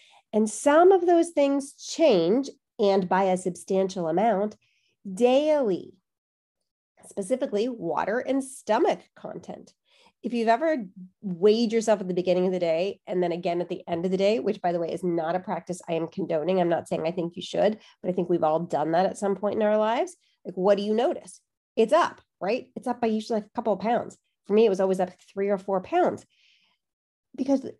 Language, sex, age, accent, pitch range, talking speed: English, female, 30-49, American, 185-245 Hz, 205 wpm